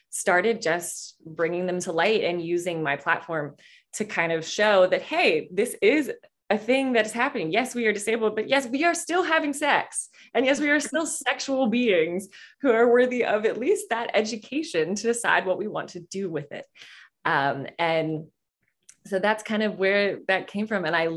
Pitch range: 165-230 Hz